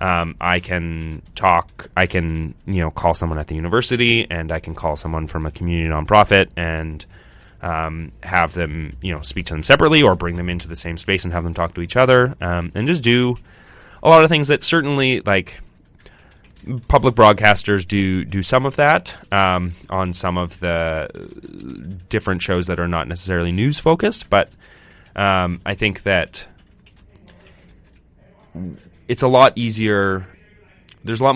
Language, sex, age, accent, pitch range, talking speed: English, male, 20-39, American, 85-100 Hz, 170 wpm